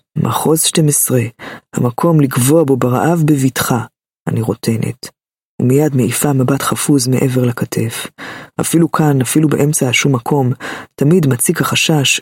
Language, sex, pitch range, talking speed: Hebrew, female, 125-150 Hz, 120 wpm